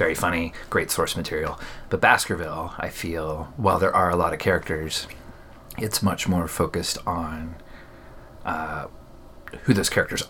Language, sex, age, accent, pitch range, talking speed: English, male, 30-49, American, 80-95 Hz, 145 wpm